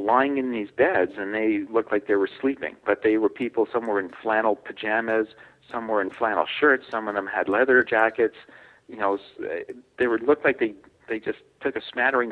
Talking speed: 210 wpm